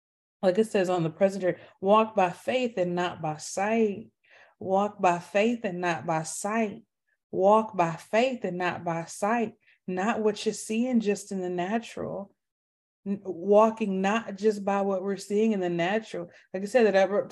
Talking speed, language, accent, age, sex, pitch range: 180 wpm, English, American, 20-39, female, 175-215 Hz